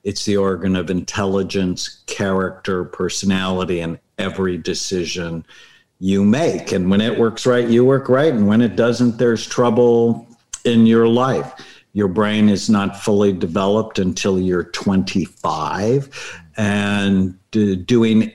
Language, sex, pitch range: English, male, 95-110 Hz